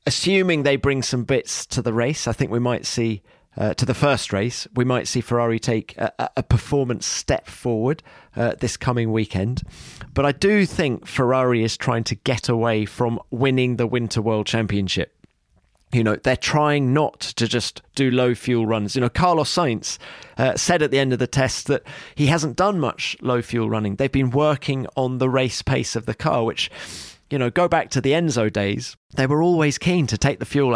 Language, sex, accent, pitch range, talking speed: English, male, British, 115-140 Hz, 205 wpm